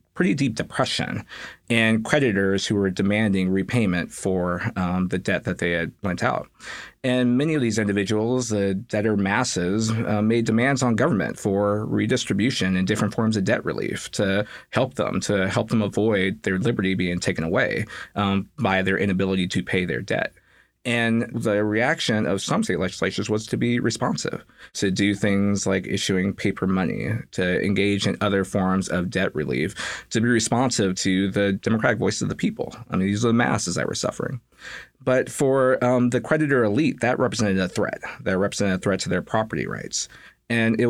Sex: male